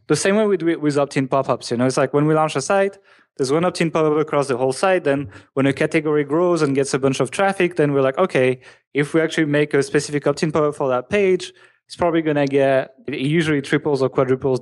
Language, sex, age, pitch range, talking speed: English, male, 20-39, 130-165 Hz, 255 wpm